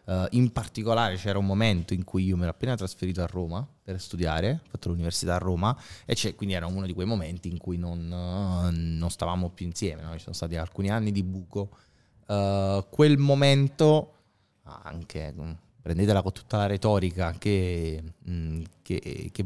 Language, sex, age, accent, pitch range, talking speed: Italian, male, 20-39, native, 90-110 Hz, 155 wpm